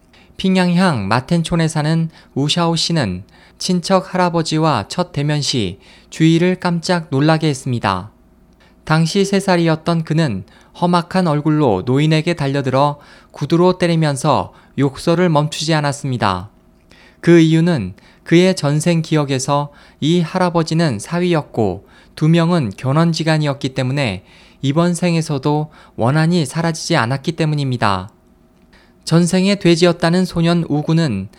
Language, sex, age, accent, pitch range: Korean, male, 20-39, native, 135-170 Hz